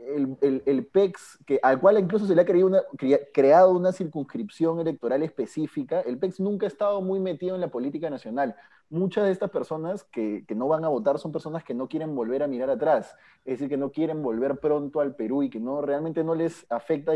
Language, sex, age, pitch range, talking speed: Spanish, male, 30-49, 140-195 Hz, 215 wpm